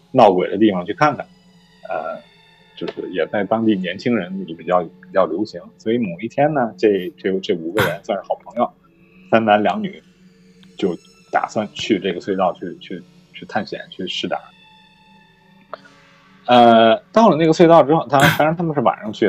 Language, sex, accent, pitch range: Chinese, male, native, 110-175 Hz